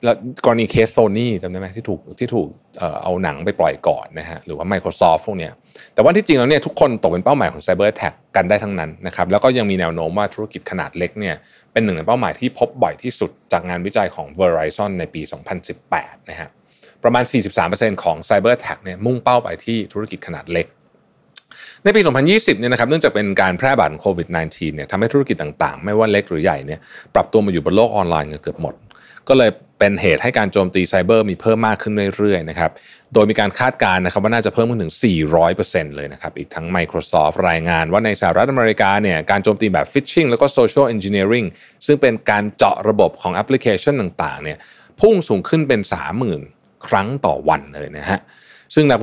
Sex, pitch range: male, 90-120 Hz